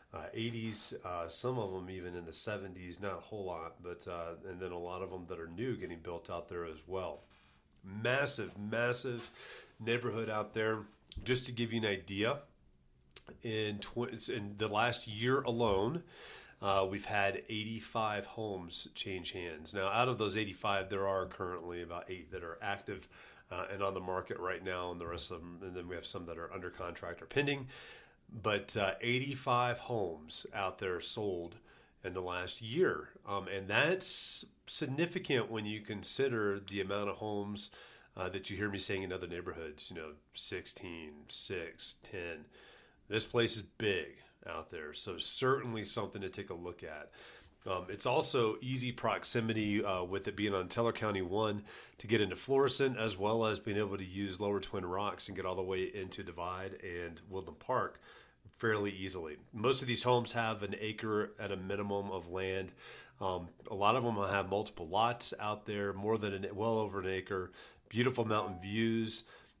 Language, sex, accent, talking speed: English, male, American, 185 wpm